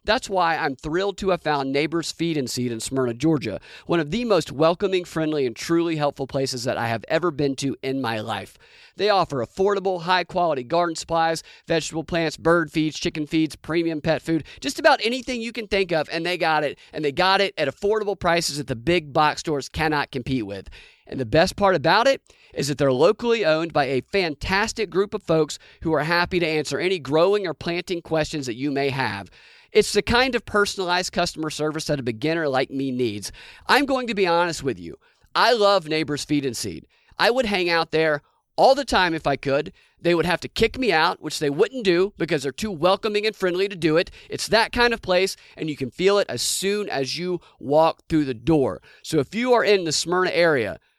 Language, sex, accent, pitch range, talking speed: English, male, American, 145-195 Hz, 220 wpm